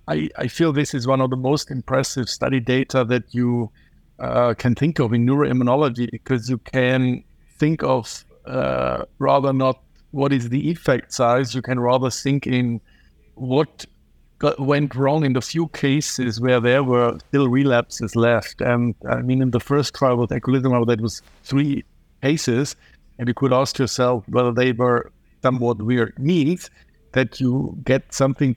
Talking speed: 165 wpm